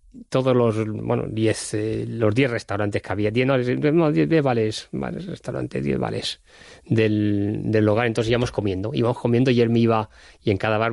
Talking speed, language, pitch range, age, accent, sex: 190 wpm, Spanish, 100-120 Hz, 30-49, Spanish, male